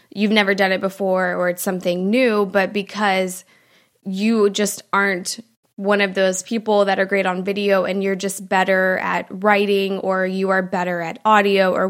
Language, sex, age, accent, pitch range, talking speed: English, female, 20-39, American, 190-210 Hz, 180 wpm